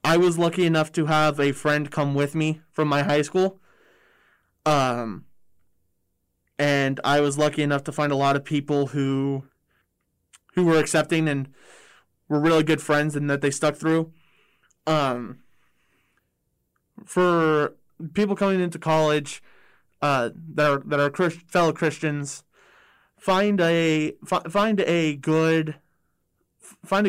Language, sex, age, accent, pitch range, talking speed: English, male, 20-39, American, 140-160 Hz, 135 wpm